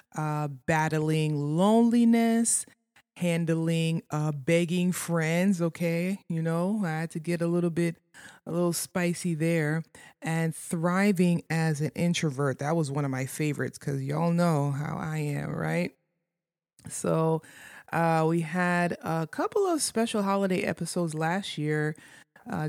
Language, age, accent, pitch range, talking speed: English, 20-39, American, 155-185 Hz, 140 wpm